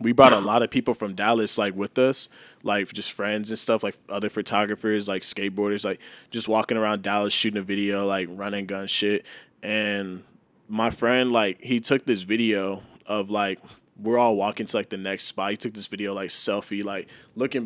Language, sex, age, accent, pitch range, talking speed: English, male, 20-39, American, 100-115 Hz, 200 wpm